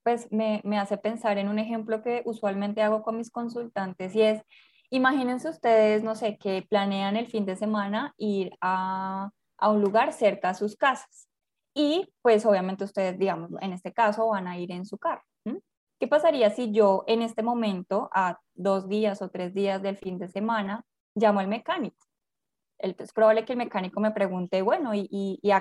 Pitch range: 195-230 Hz